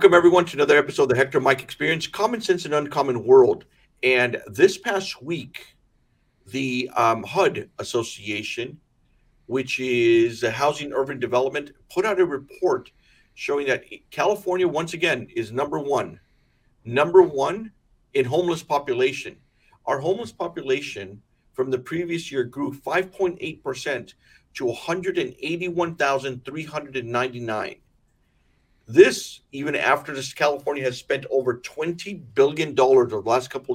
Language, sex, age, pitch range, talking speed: English, male, 50-69, 125-190 Hz, 135 wpm